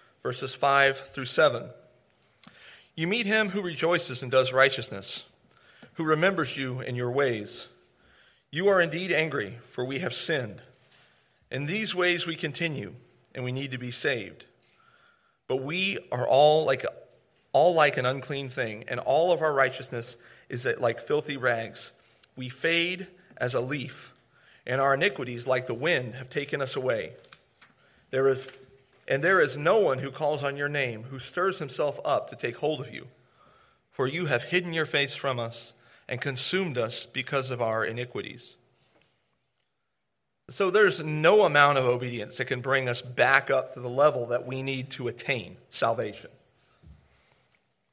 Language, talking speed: English, 160 wpm